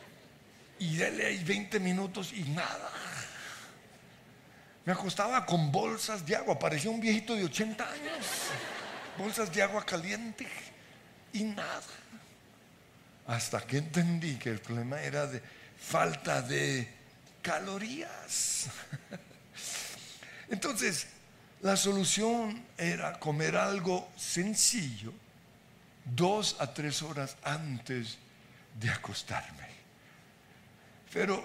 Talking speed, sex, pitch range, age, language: 95 wpm, male, 145-200 Hz, 60-79, Spanish